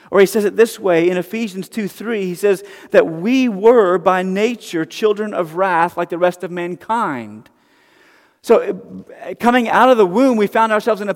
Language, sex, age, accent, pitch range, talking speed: English, male, 40-59, American, 180-225 Hz, 195 wpm